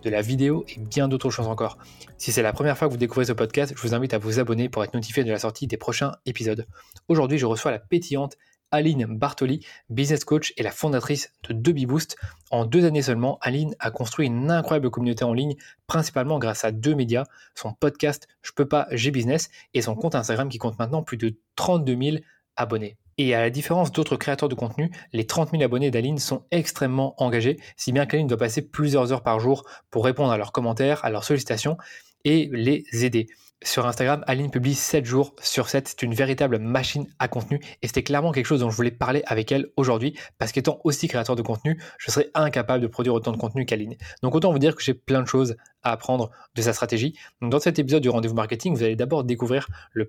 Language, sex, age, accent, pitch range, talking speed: French, male, 20-39, French, 120-145 Hz, 225 wpm